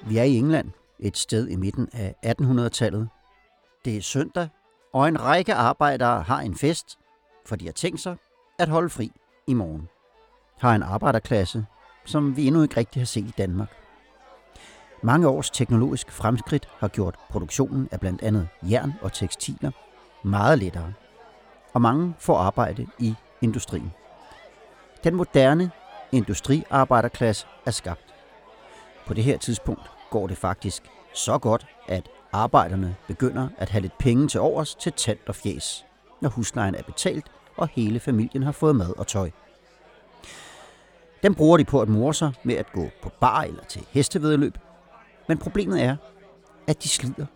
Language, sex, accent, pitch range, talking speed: Danish, male, native, 105-150 Hz, 150 wpm